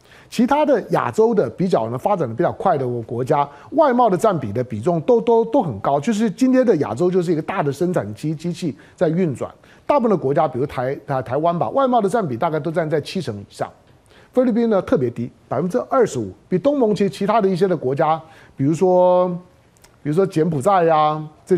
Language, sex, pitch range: Chinese, male, 145-230 Hz